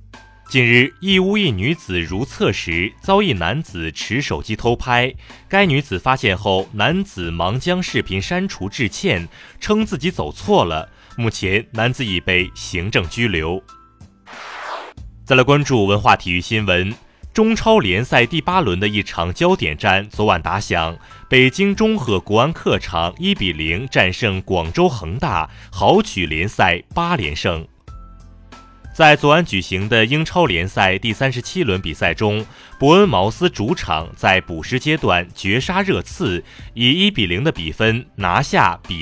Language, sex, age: Chinese, male, 30-49